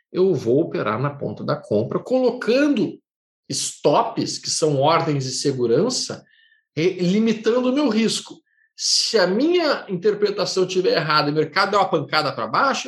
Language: Portuguese